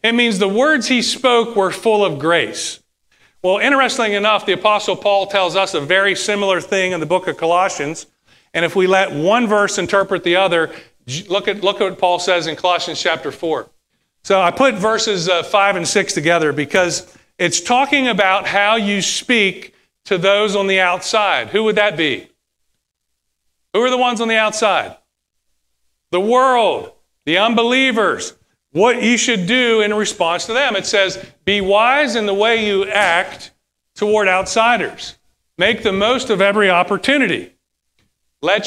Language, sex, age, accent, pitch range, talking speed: English, male, 40-59, American, 165-215 Hz, 170 wpm